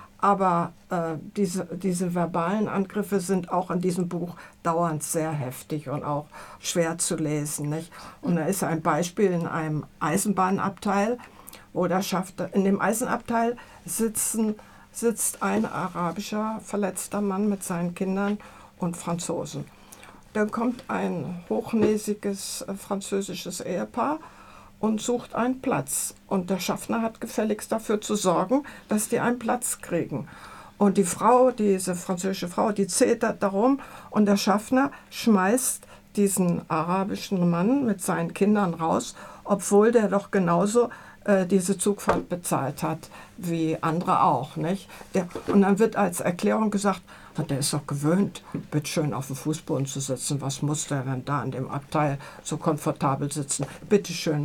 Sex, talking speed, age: female, 145 wpm, 60-79